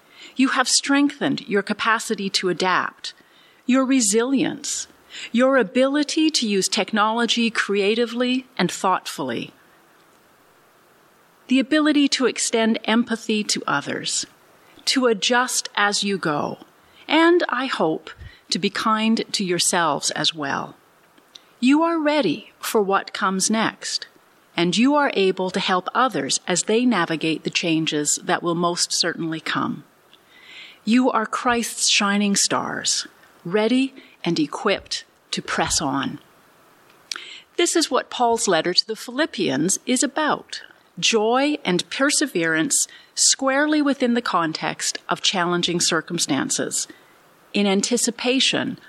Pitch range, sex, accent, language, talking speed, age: 190-270 Hz, female, American, English, 120 wpm, 40-59